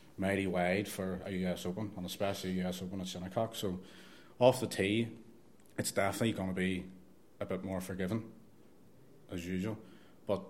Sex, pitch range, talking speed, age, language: male, 95-105 Hz, 165 wpm, 30-49, English